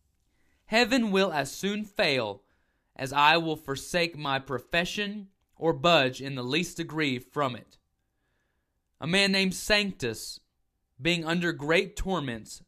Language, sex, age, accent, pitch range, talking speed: English, male, 20-39, American, 125-190 Hz, 130 wpm